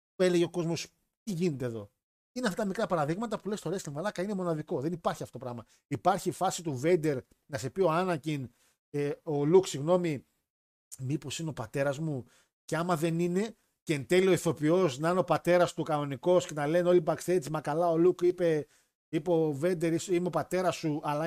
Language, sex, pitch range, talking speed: Greek, male, 140-175 Hz, 215 wpm